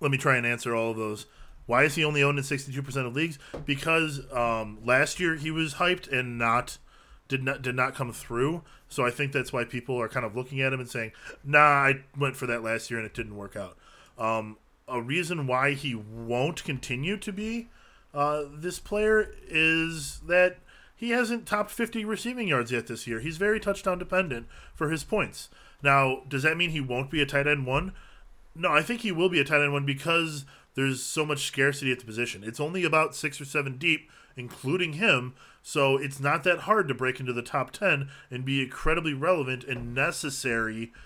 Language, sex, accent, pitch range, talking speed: English, male, American, 125-165 Hz, 210 wpm